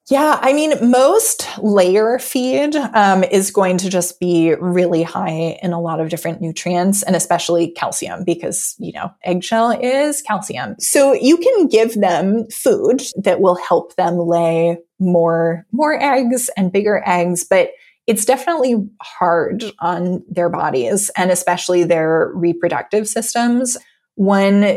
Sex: female